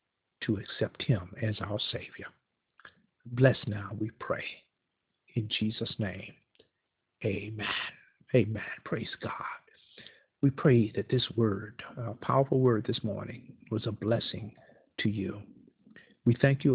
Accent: American